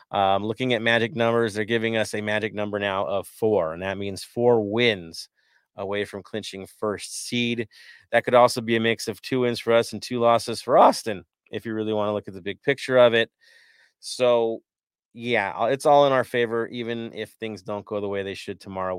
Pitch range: 95-120 Hz